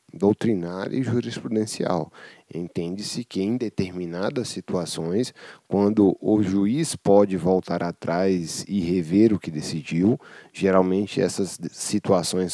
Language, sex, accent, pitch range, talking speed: English, male, Brazilian, 90-115 Hz, 105 wpm